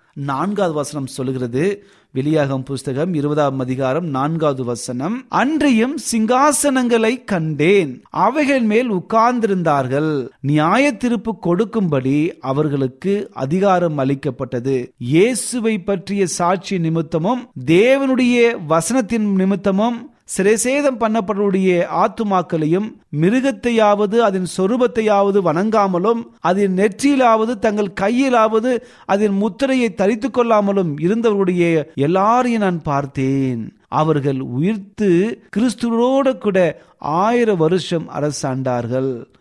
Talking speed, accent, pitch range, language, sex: 80 wpm, native, 150-225 Hz, Tamil, male